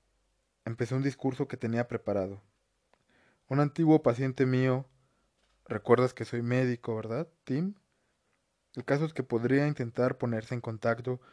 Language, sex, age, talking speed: Spanish, male, 20-39, 130 wpm